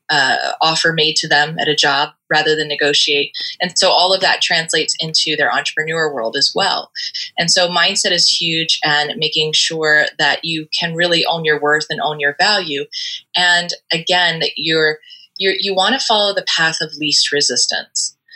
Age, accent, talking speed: 20-39, American, 185 wpm